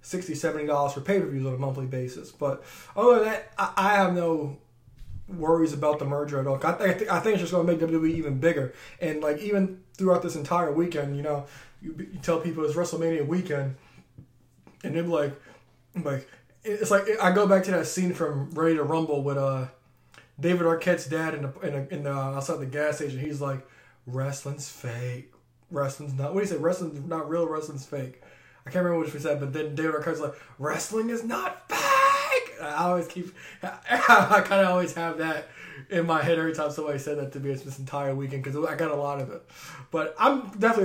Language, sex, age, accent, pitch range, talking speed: English, male, 20-39, American, 140-175 Hz, 215 wpm